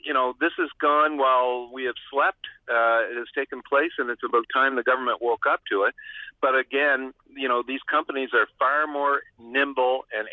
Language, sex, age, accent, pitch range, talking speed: English, male, 50-69, American, 120-145 Hz, 205 wpm